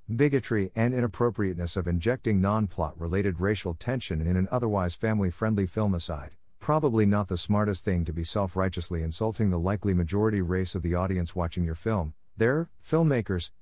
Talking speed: 170 wpm